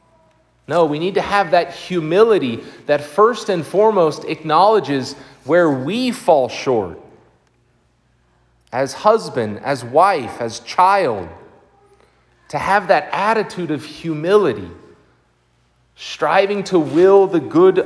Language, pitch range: English, 150-205 Hz